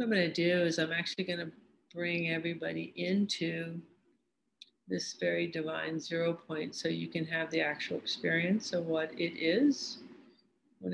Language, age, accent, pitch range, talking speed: English, 50-69, American, 165-195 Hz, 160 wpm